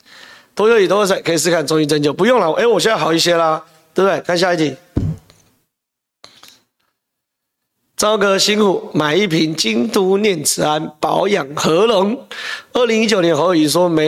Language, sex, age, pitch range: Chinese, male, 30-49, 155-210 Hz